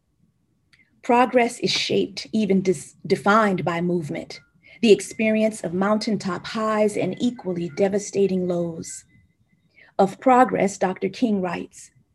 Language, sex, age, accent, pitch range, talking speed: English, female, 40-59, American, 180-225 Hz, 110 wpm